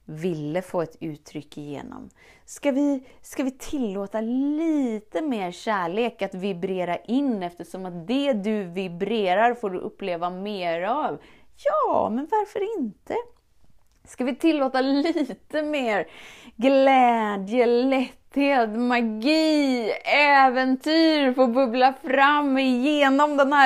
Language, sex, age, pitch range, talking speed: Swedish, female, 20-39, 195-275 Hz, 110 wpm